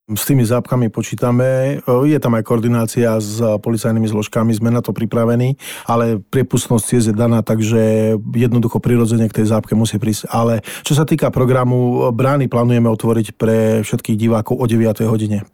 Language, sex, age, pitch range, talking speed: Slovak, male, 40-59, 115-125 Hz, 155 wpm